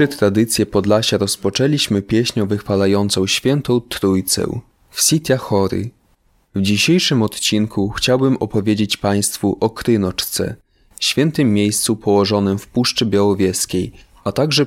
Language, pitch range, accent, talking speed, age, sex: Polish, 100-115 Hz, native, 105 wpm, 20-39, male